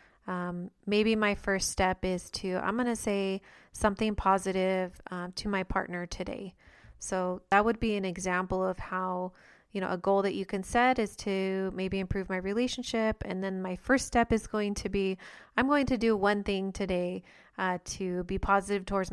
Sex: female